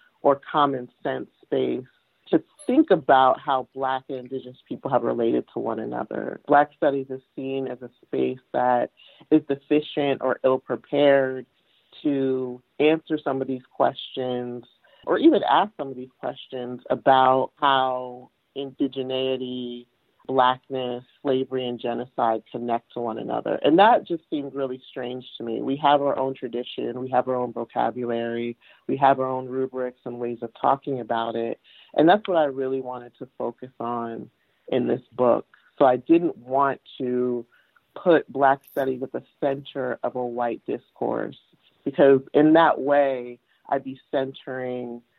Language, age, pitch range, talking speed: English, 40-59, 125-140 Hz, 155 wpm